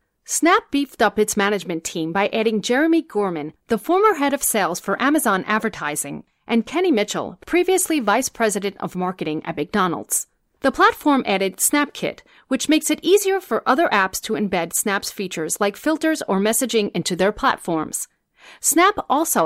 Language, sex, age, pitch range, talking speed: English, female, 40-59, 185-280 Hz, 160 wpm